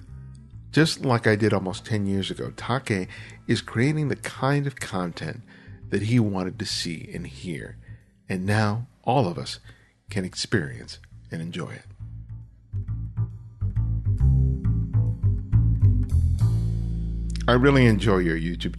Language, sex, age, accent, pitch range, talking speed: English, male, 50-69, American, 90-115 Hz, 120 wpm